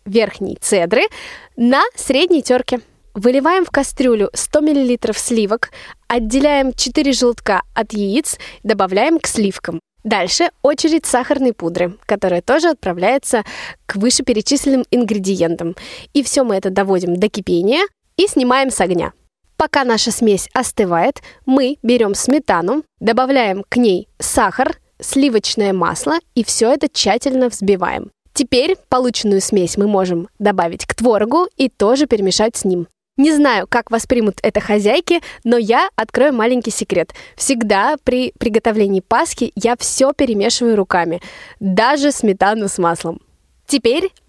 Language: Russian